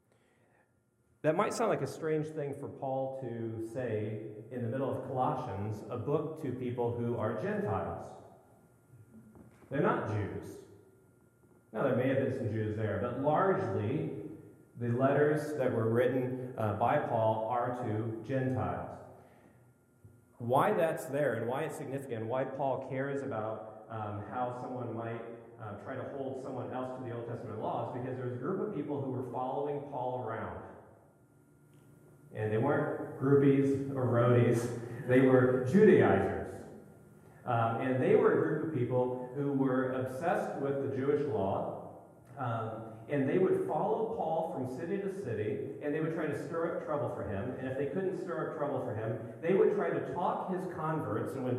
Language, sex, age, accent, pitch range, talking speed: English, male, 40-59, American, 115-145 Hz, 170 wpm